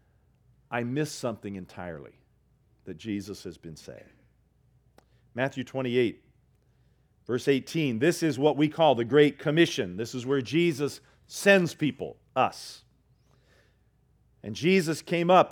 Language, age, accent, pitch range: English, 50-69, American, 115-150 Hz